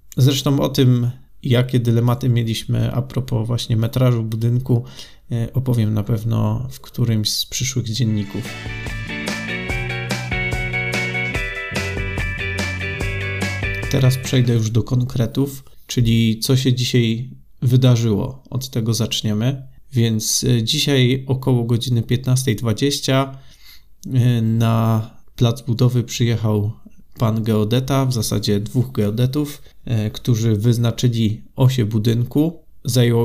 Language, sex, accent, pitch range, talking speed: Polish, male, native, 110-125 Hz, 95 wpm